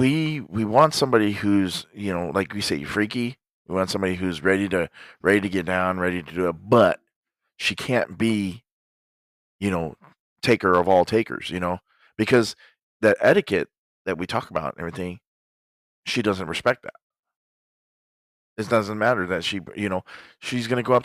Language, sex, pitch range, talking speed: English, male, 90-105 Hz, 175 wpm